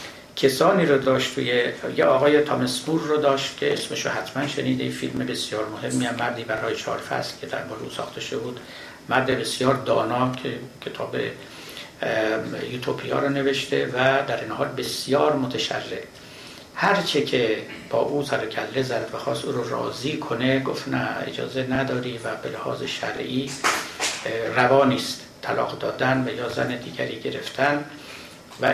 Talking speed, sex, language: 140 wpm, male, Persian